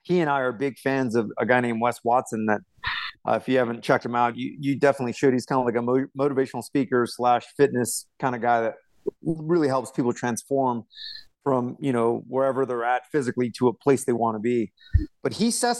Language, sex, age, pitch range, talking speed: English, male, 30-49, 120-145 Hz, 225 wpm